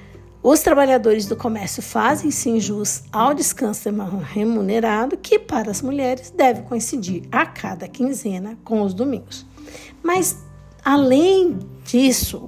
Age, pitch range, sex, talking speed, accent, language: 60-79, 205-275 Hz, female, 120 wpm, Brazilian, Portuguese